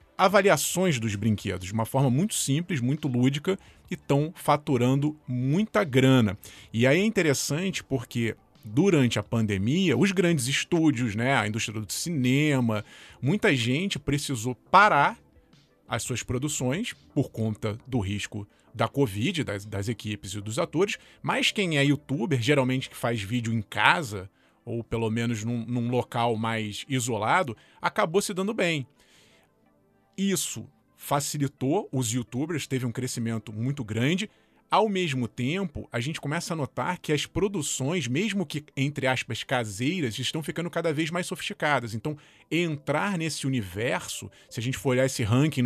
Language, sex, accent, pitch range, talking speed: Portuguese, male, Brazilian, 120-165 Hz, 150 wpm